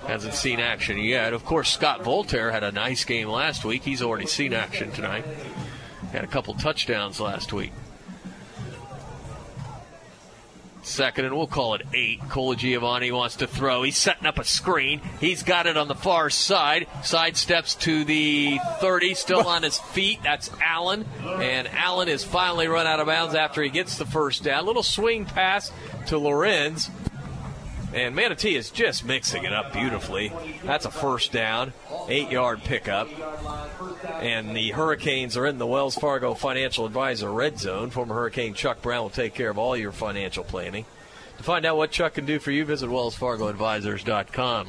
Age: 40-59